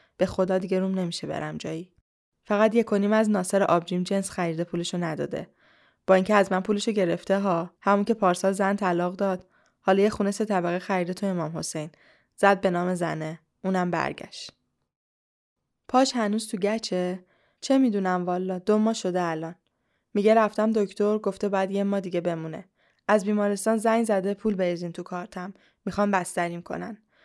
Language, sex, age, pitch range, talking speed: Persian, female, 10-29, 175-210 Hz, 165 wpm